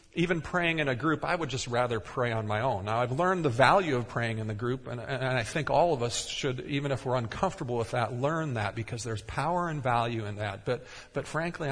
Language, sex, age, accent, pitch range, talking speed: English, male, 50-69, American, 115-135 Hz, 250 wpm